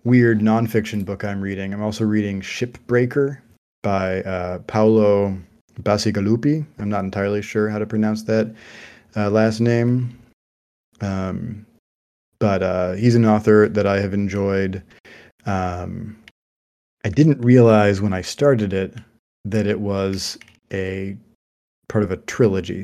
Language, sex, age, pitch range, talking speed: English, male, 30-49, 95-110 Hz, 130 wpm